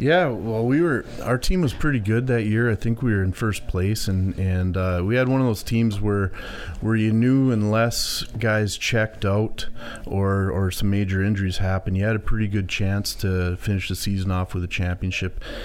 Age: 30-49